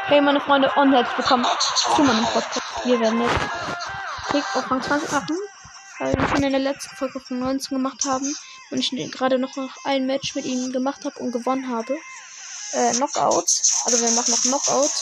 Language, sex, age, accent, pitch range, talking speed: German, female, 10-29, German, 255-300 Hz, 165 wpm